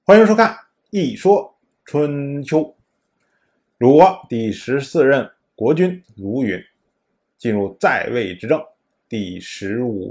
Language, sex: Chinese, male